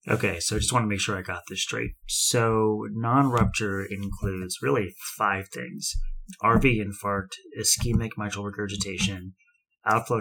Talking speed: 140 wpm